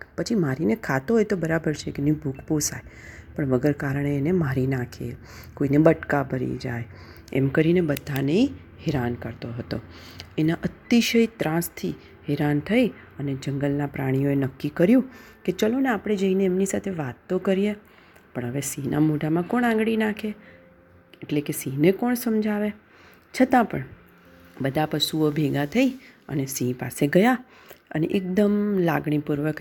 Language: Gujarati